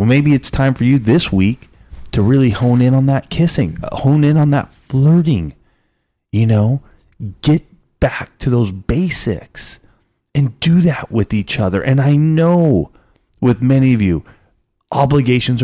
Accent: American